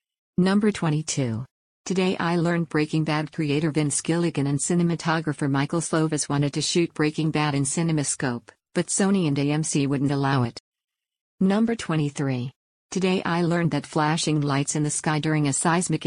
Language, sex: English, female